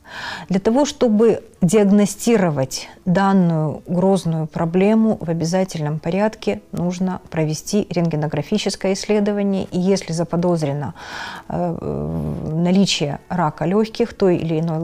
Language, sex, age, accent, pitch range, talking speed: Ukrainian, female, 30-49, native, 165-200 Hz, 95 wpm